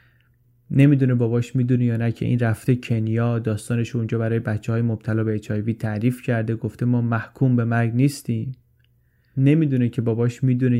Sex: male